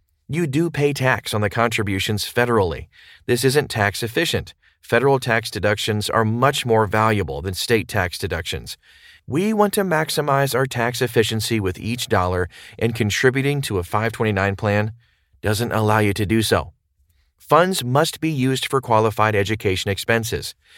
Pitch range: 100-135 Hz